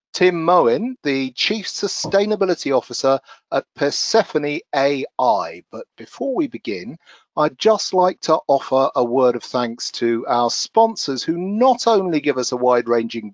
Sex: male